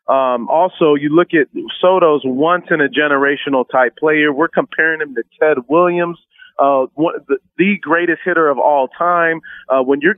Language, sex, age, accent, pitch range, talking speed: English, male, 30-49, American, 145-175 Hz, 155 wpm